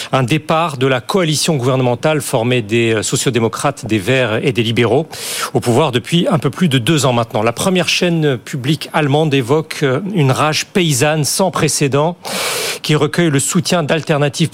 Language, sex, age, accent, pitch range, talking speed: French, male, 40-59, French, 140-175 Hz, 165 wpm